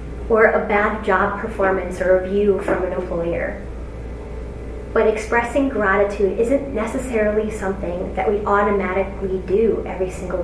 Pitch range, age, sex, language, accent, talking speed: 190-220 Hz, 30-49, female, English, American, 130 wpm